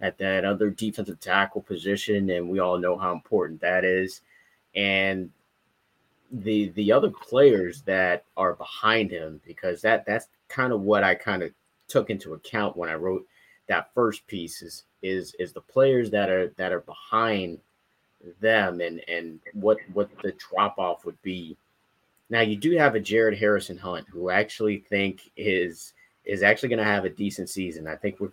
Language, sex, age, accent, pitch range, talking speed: English, male, 30-49, American, 90-105 Hz, 180 wpm